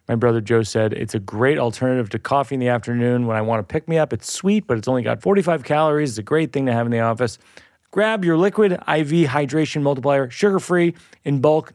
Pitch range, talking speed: 120-165 Hz, 235 wpm